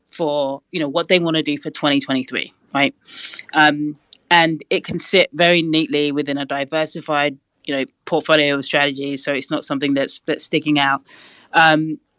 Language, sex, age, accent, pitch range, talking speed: English, female, 20-39, British, 140-160 Hz, 175 wpm